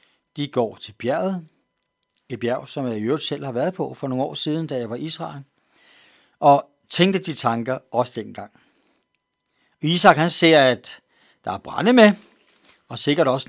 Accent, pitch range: native, 115-160 Hz